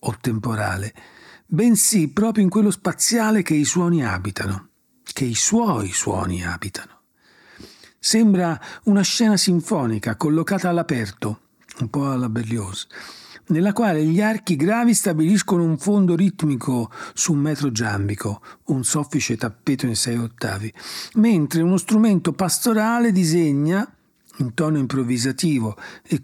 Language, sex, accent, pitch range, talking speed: Italian, male, native, 120-175 Hz, 125 wpm